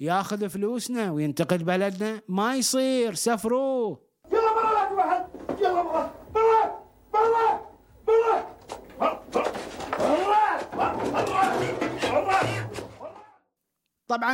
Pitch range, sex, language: 165-220 Hz, male, Arabic